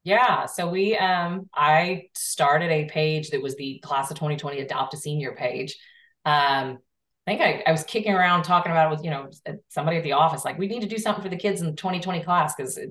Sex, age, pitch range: female, 30-49, 150-180 Hz